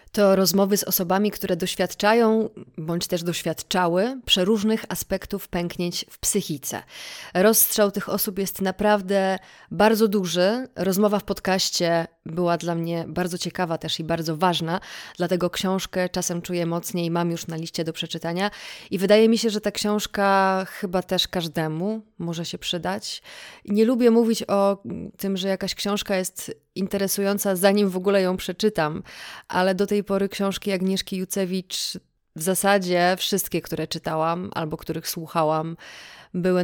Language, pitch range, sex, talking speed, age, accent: Polish, 170-200 Hz, female, 145 wpm, 30-49, native